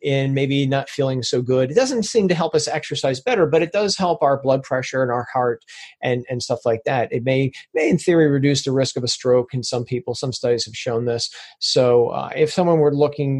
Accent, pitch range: American, 125-155 Hz